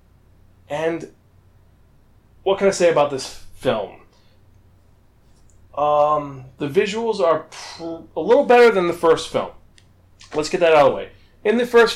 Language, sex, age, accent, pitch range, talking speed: English, male, 30-49, American, 120-160 Hz, 150 wpm